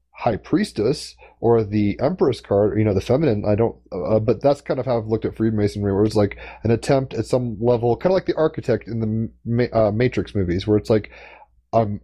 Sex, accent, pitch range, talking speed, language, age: male, American, 100-115 Hz, 220 wpm, English, 30-49